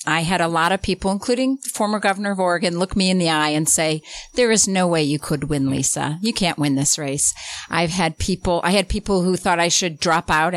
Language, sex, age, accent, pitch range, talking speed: English, female, 50-69, American, 155-195 Hz, 245 wpm